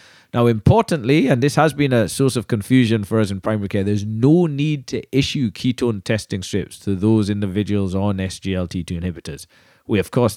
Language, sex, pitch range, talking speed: English, male, 95-120 Hz, 185 wpm